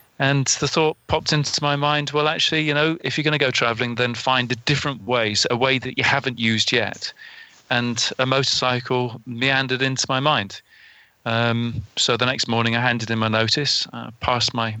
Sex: male